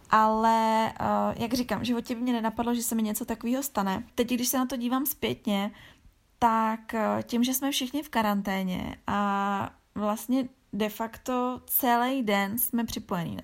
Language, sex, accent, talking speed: Czech, female, native, 155 wpm